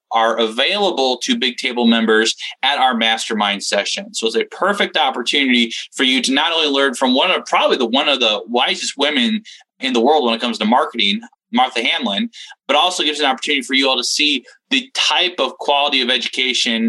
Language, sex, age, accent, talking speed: English, male, 20-39, American, 205 wpm